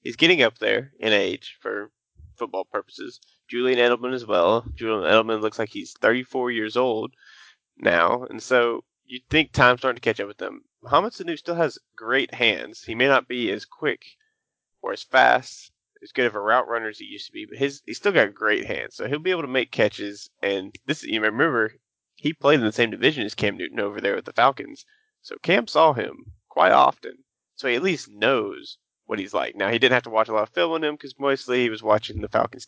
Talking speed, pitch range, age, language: 225 wpm, 115-170 Hz, 20-39, English